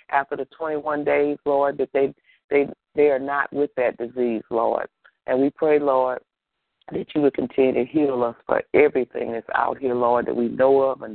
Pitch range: 130-145 Hz